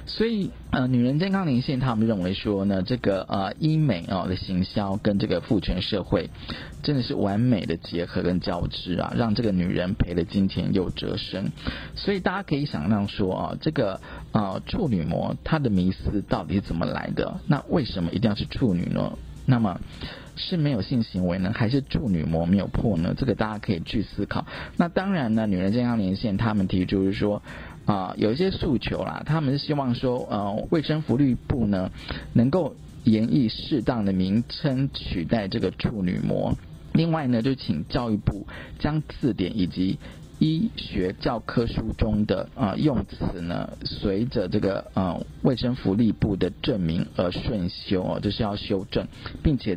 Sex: male